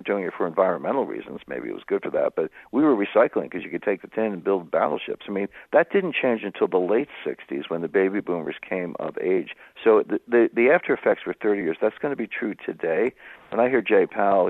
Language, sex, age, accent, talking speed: English, male, 60-79, American, 250 wpm